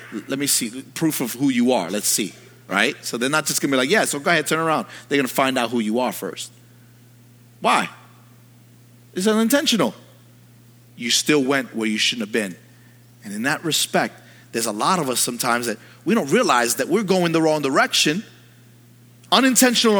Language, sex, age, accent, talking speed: English, male, 30-49, American, 190 wpm